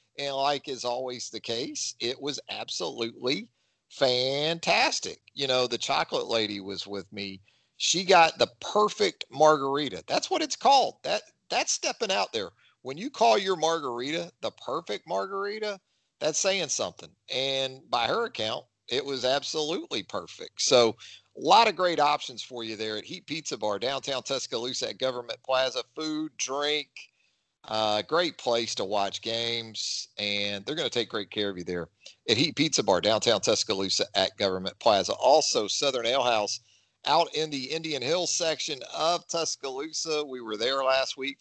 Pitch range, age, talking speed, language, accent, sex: 115-155 Hz, 40-59, 165 wpm, English, American, male